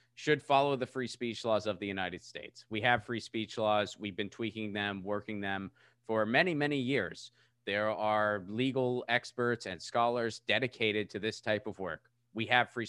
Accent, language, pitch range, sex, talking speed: American, English, 110-130 Hz, male, 185 wpm